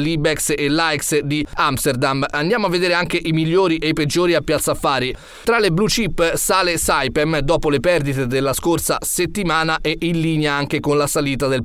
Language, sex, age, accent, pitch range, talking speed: Italian, male, 30-49, native, 130-165 Hz, 190 wpm